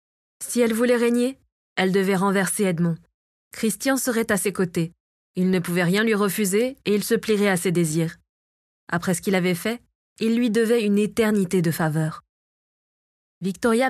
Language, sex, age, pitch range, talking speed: French, female, 20-39, 180-230 Hz, 170 wpm